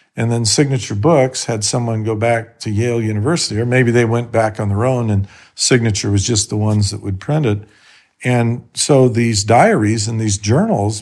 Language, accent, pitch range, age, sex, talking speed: English, American, 115-155 Hz, 50-69, male, 195 wpm